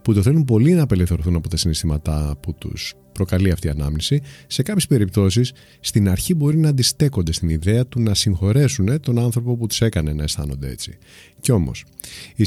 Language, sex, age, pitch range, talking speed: Greek, male, 30-49, 90-125 Hz, 190 wpm